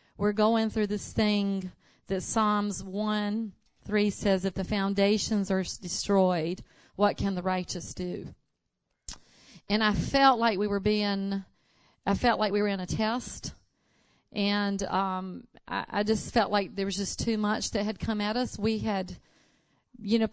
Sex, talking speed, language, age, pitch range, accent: female, 165 wpm, English, 40-59, 195-225 Hz, American